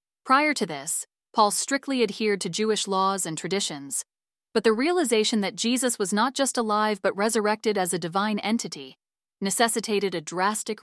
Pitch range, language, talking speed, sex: 185-230 Hz, English, 160 wpm, female